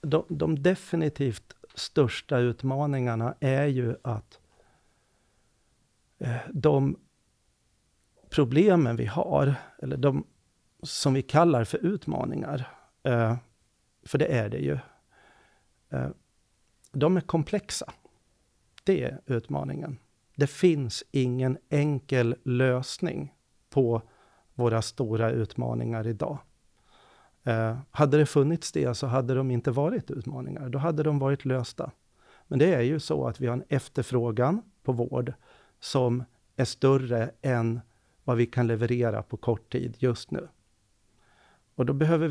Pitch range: 115-140 Hz